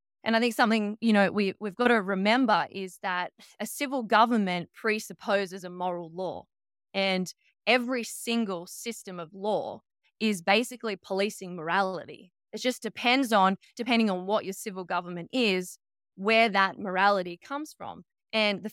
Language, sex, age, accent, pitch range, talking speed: English, female, 20-39, Australian, 185-225 Hz, 155 wpm